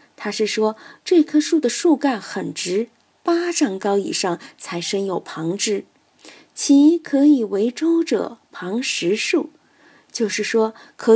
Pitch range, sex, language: 200-300 Hz, female, Chinese